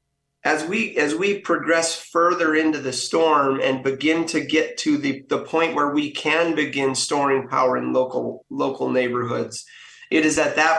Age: 30-49